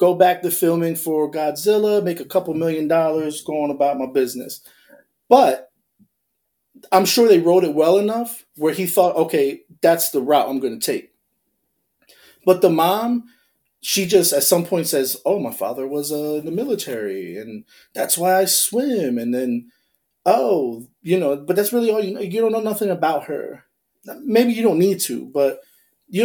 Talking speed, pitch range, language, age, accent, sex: 185 wpm, 145-195 Hz, English, 30-49, American, male